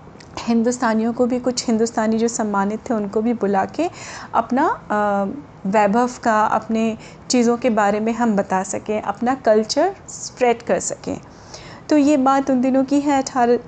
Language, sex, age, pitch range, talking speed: Hindi, female, 30-49, 205-250 Hz, 155 wpm